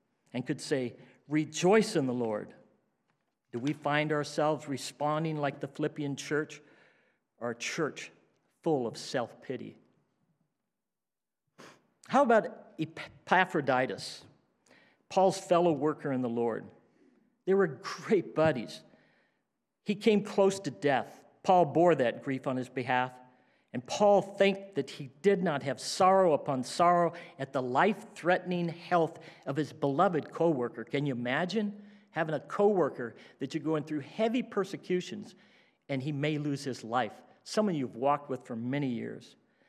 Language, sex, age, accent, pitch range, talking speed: English, male, 50-69, American, 140-190 Hz, 135 wpm